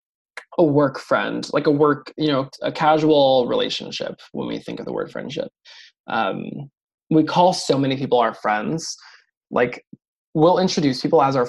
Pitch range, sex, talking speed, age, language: 130-175 Hz, male, 165 wpm, 20-39, English